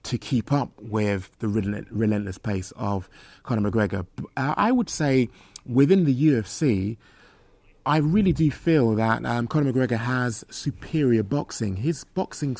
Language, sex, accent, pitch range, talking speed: English, male, British, 105-140 Hz, 140 wpm